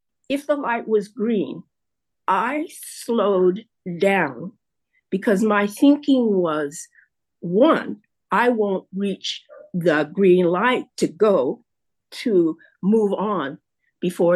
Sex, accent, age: female, American, 50-69